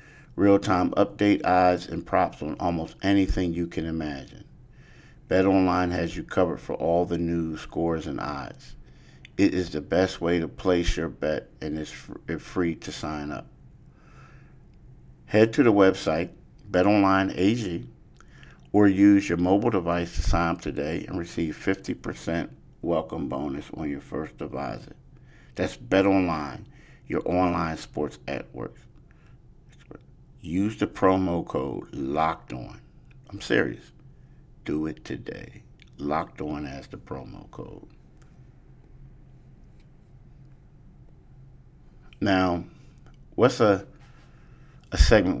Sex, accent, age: male, American, 50-69